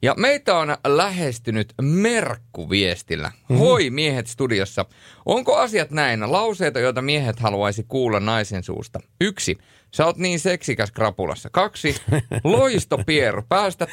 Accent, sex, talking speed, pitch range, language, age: native, male, 110 wpm, 120-170 Hz, Finnish, 30-49